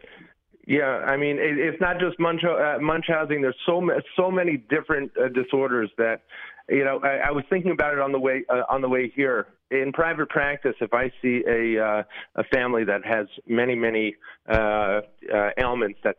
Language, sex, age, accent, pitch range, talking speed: English, male, 40-59, American, 105-135 Hz, 195 wpm